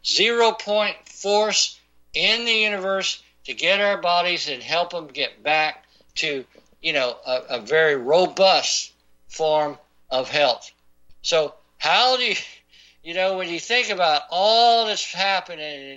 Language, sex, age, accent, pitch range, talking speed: English, male, 60-79, American, 150-205 Hz, 145 wpm